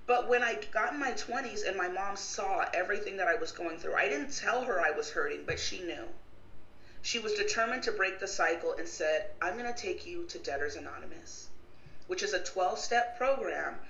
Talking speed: 215 wpm